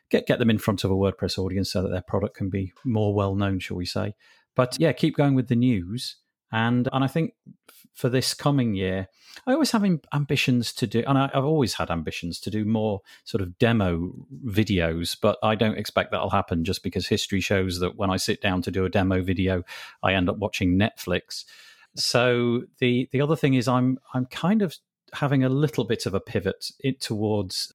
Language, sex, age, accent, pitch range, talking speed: English, male, 40-59, British, 95-125 Hz, 215 wpm